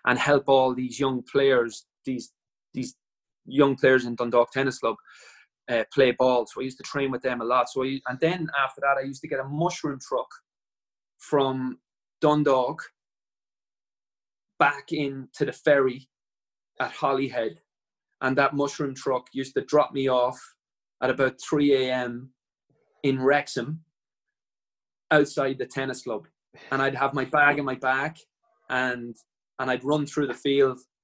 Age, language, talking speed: 20-39, English, 155 wpm